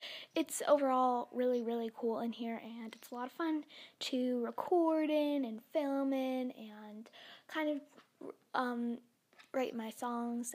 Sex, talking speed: female, 150 wpm